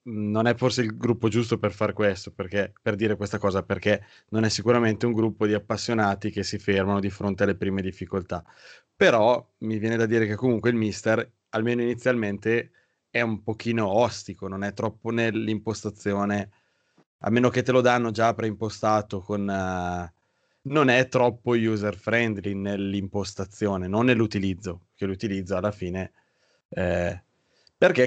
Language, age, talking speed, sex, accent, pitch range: Italian, 20-39, 155 wpm, male, native, 100-115 Hz